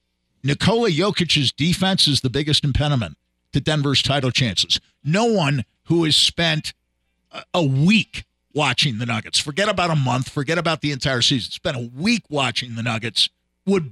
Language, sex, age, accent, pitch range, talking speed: English, male, 50-69, American, 115-165 Hz, 160 wpm